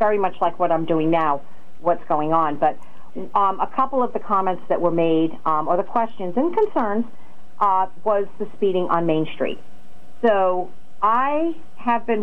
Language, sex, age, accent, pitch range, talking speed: English, female, 50-69, American, 170-215 Hz, 180 wpm